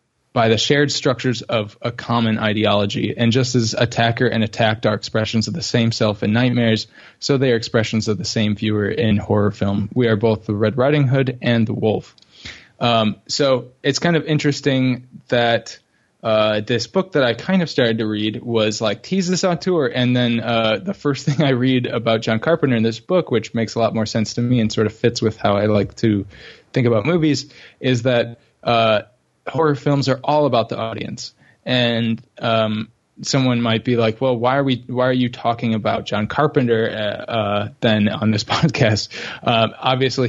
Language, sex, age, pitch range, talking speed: English, male, 20-39, 110-130 Hz, 200 wpm